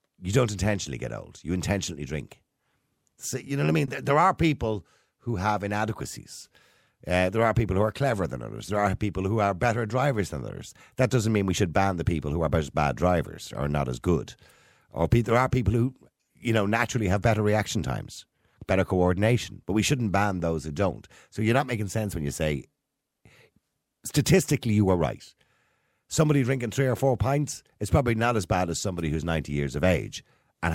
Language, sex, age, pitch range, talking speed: English, male, 50-69, 80-120 Hz, 210 wpm